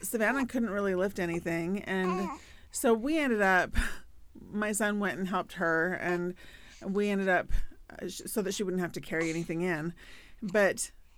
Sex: female